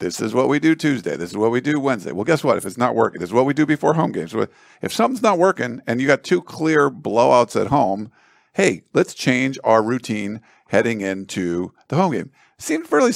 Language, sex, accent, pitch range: English, male, American, 105-145 Hz